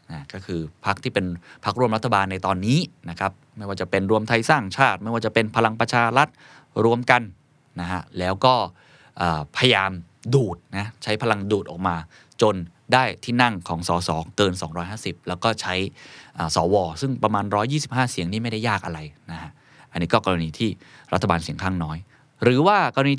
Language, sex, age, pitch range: Thai, male, 20-39, 95-130 Hz